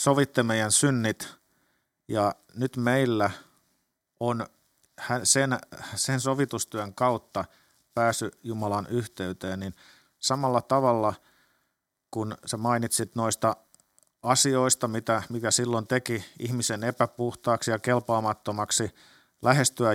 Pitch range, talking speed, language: 110-130 Hz, 95 wpm, Finnish